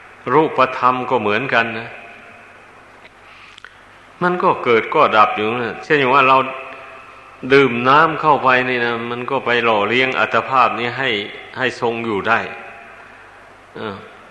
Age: 60-79